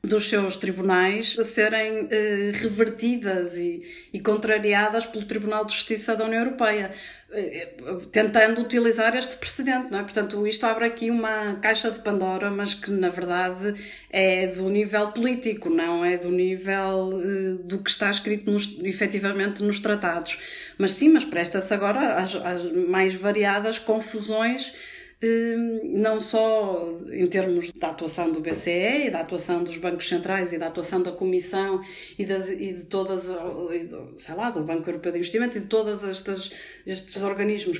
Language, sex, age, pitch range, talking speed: Portuguese, female, 20-39, 175-215 Hz, 155 wpm